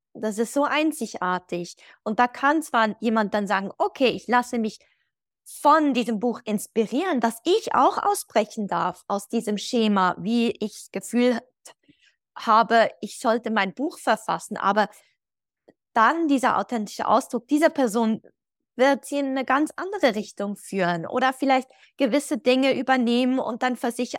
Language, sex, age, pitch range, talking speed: German, female, 20-39, 215-265 Hz, 150 wpm